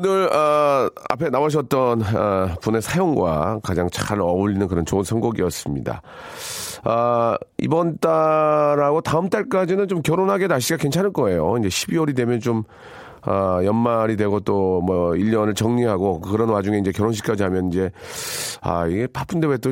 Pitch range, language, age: 100-135 Hz, Korean, 40-59